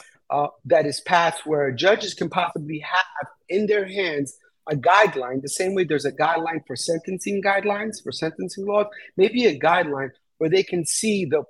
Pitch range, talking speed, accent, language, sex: 135-185 Hz, 175 wpm, American, English, male